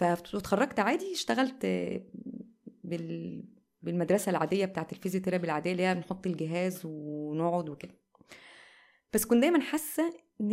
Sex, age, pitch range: female, 20-39, 175-225 Hz